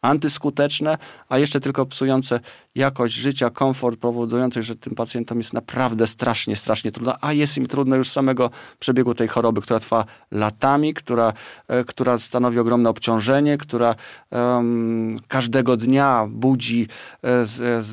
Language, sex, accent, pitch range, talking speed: Polish, male, native, 110-130 Hz, 135 wpm